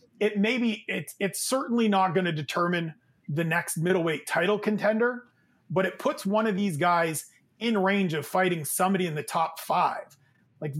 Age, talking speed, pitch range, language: 30-49, 180 wpm, 165-195 Hz, English